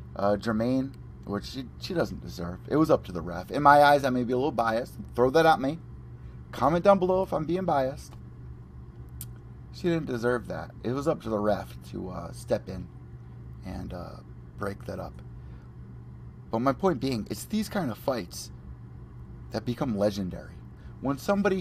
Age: 30-49